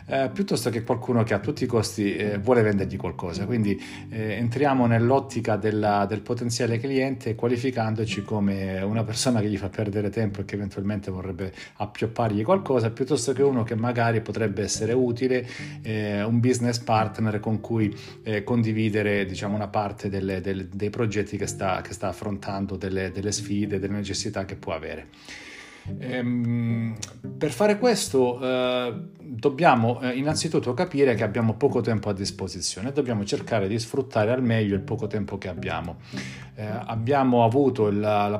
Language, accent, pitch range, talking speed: Italian, native, 105-125 Hz, 165 wpm